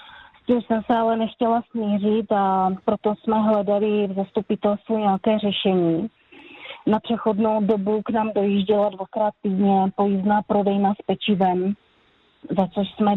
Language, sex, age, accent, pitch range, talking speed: Czech, female, 30-49, native, 190-210 Hz, 130 wpm